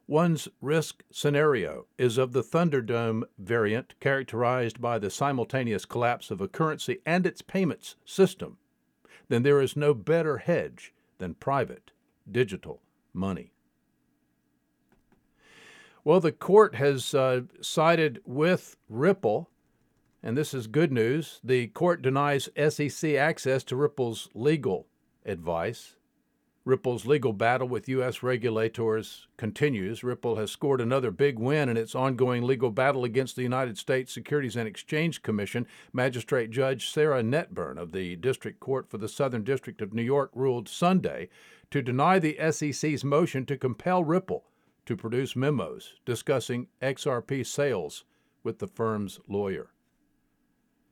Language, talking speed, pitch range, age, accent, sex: English, 135 wpm, 120-150 Hz, 50-69, American, male